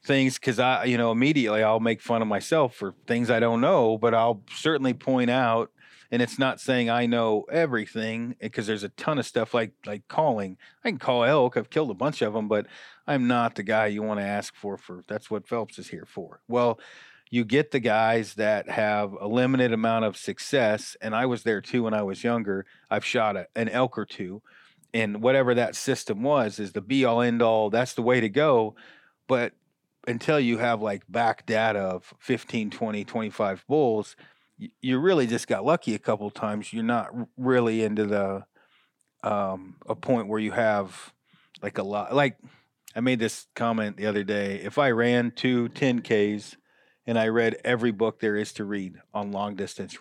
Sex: male